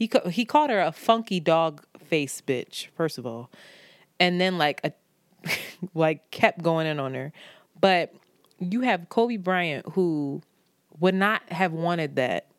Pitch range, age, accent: 165-195 Hz, 20-39, American